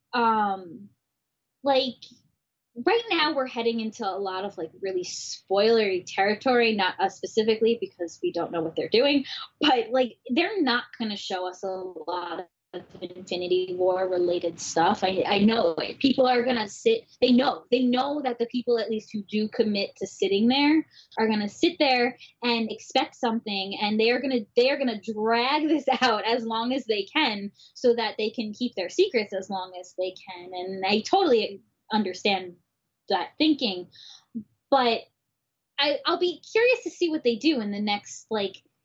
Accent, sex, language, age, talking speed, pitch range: American, female, English, 10-29, 180 wpm, 195-270 Hz